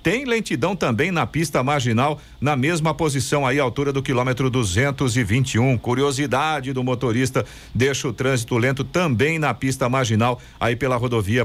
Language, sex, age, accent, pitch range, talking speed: Portuguese, male, 50-69, Brazilian, 125-160 Hz, 145 wpm